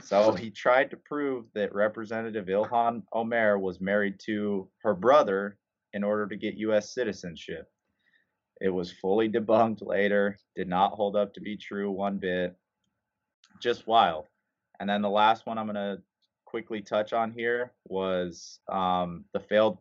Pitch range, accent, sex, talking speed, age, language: 95-110 Hz, American, male, 155 wpm, 20-39, English